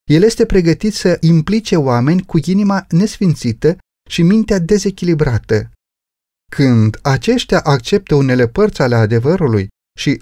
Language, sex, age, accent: Romanian, male, 30-49, native